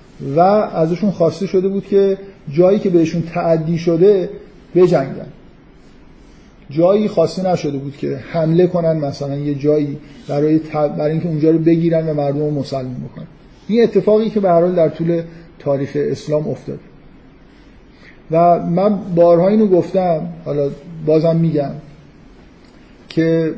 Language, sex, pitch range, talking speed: Persian, male, 150-180 Hz, 130 wpm